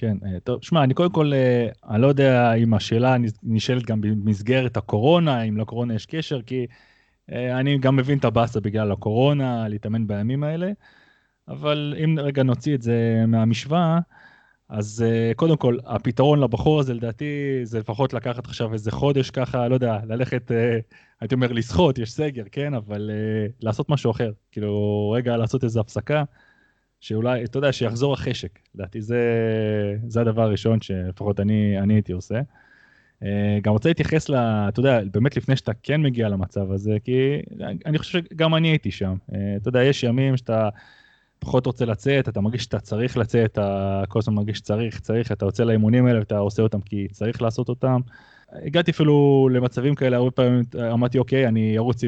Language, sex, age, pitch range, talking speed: Hebrew, male, 20-39, 110-135 Hz, 165 wpm